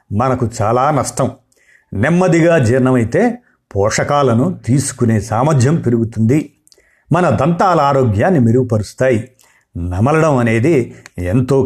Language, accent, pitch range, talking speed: Telugu, native, 120-145 Hz, 80 wpm